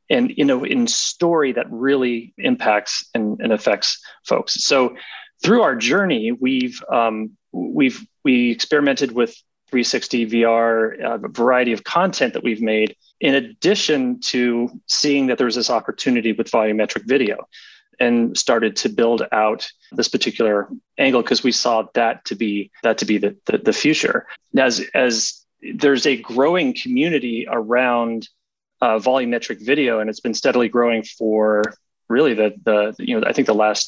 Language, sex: English, male